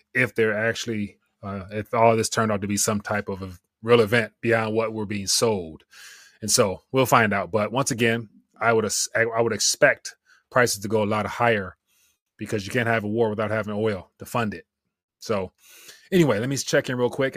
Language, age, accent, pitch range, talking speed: English, 30-49, American, 110-125 Hz, 210 wpm